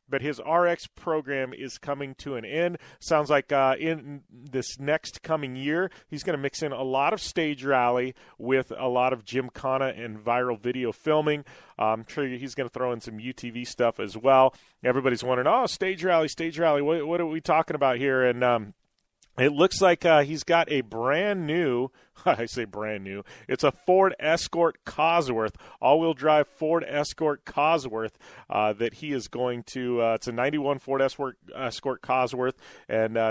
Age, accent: 30-49, American